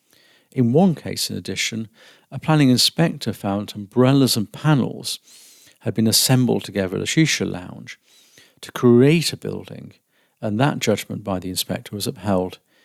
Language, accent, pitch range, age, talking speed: English, British, 100-130 Hz, 50-69, 150 wpm